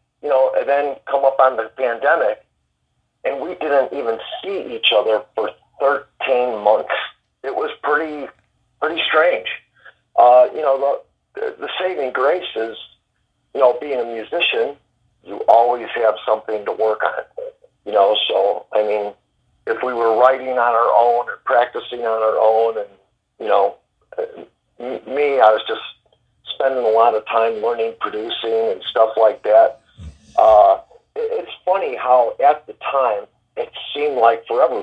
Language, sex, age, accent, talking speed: English, male, 50-69, American, 155 wpm